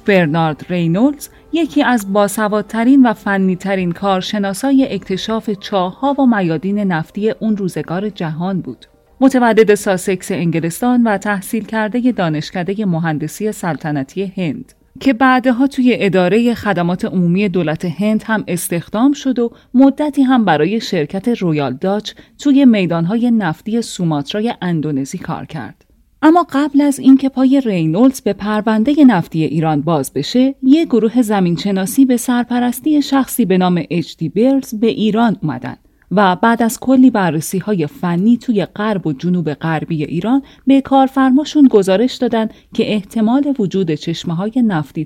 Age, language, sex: 30-49, Persian, female